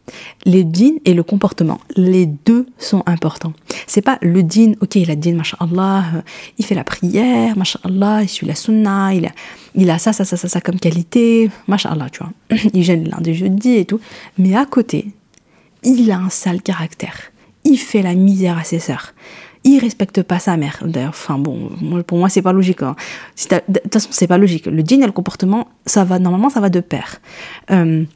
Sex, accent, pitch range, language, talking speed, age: female, French, 170-205 Hz, French, 205 wpm, 30-49